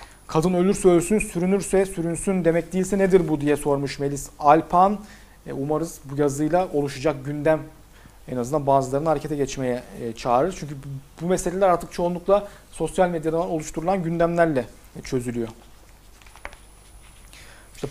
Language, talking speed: Turkish, 115 wpm